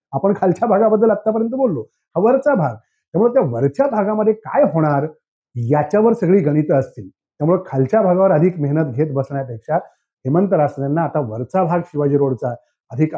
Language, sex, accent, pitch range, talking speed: English, male, Indian, 145-200 Hz, 185 wpm